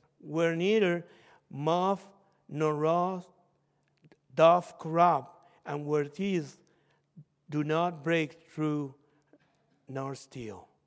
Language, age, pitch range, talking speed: English, 50-69, 155-205 Hz, 90 wpm